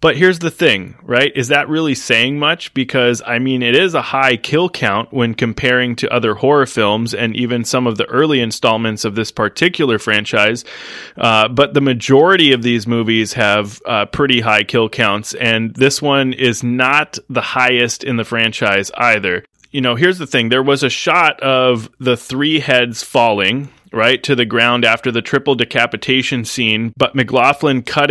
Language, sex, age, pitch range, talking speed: English, male, 20-39, 115-135 Hz, 185 wpm